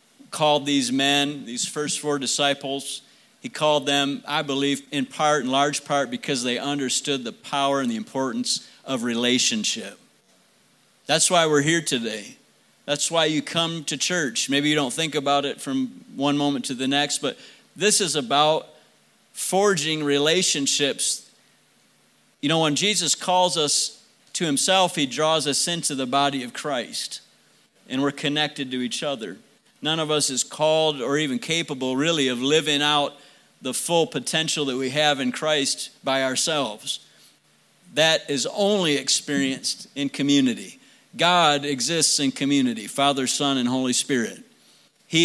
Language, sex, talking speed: English, male, 155 wpm